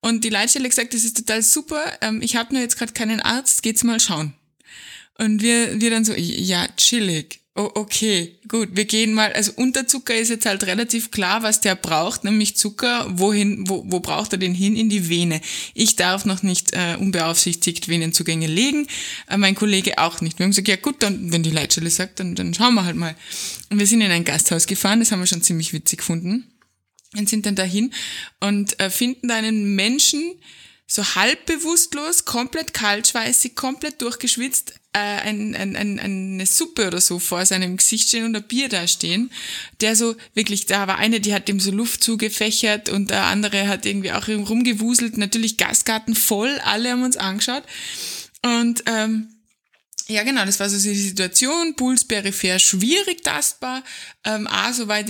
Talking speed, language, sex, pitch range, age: 185 wpm, German, female, 190-235 Hz, 20-39